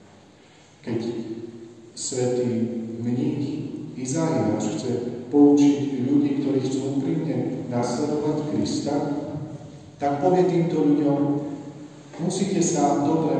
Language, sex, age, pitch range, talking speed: Slovak, male, 40-59, 130-165 Hz, 90 wpm